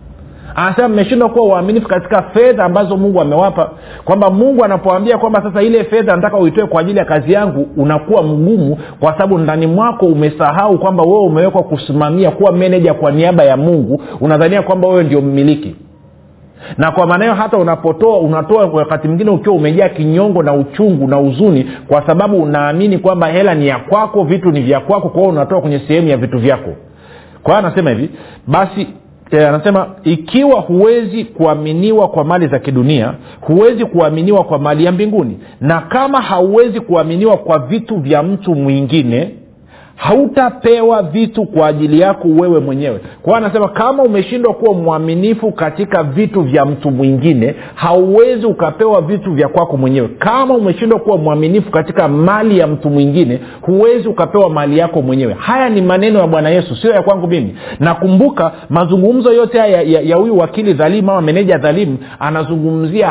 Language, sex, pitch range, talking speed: Swahili, male, 150-205 Hz, 155 wpm